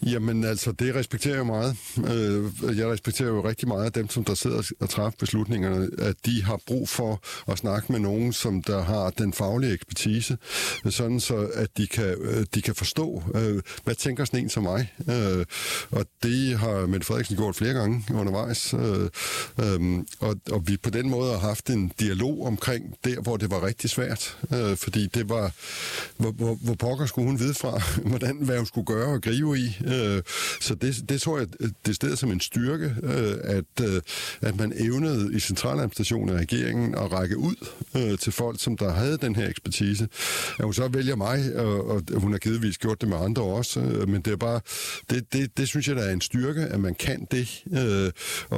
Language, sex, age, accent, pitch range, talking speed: Danish, male, 60-79, native, 105-125 Hz, 195 wpm